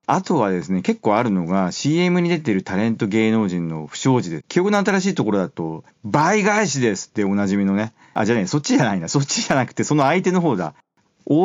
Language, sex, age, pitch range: Japanese, male, 40-59, 105-160 Hz